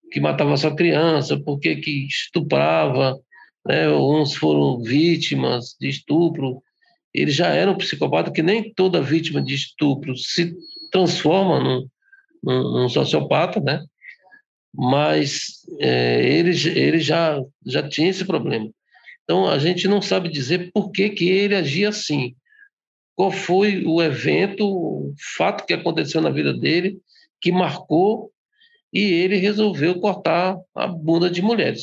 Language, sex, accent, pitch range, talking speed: English, male, Brazilian, 150-210 Hz, 140 wpm